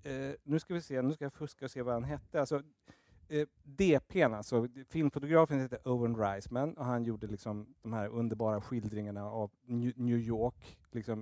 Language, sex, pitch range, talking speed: Swedish, male, 115-150 Hz, 185 wpm